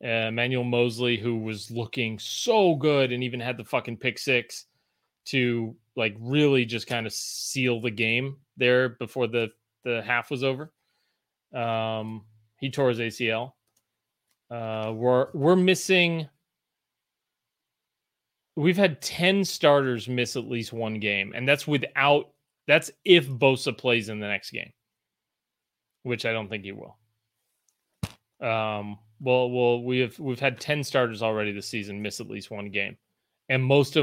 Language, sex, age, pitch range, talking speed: English, male, 30-49, 115-140 Hz, 150 wpm